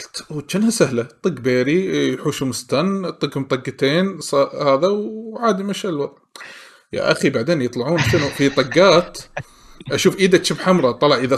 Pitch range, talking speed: 125-170 Hz, 120 wpm